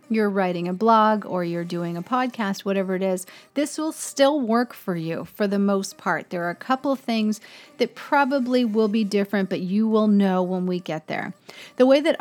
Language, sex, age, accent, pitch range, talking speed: English, female, 40-59, American, 185-240 Hz, 210 wpm